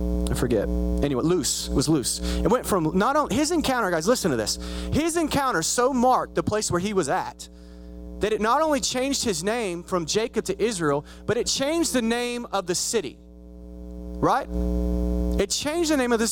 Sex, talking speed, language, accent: male, 190 wpm, English, American